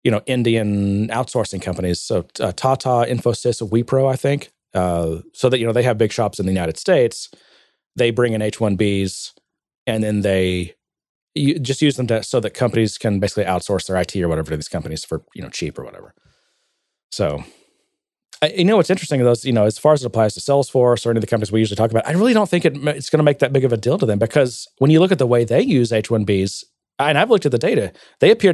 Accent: American